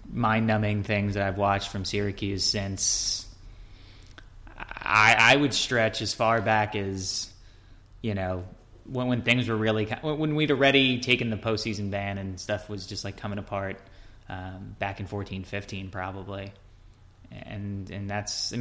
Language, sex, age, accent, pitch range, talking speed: English, male, 20-39, American, 100-110 Hz, 155 wpm